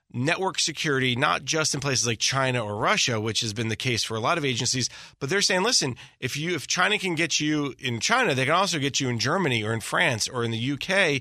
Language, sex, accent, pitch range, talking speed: English, male, American, 120-150 Hz, 250 wpm